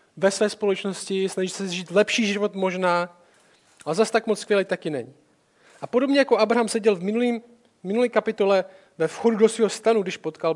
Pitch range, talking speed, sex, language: 185-220 Hz, 190 wpm, male, Czech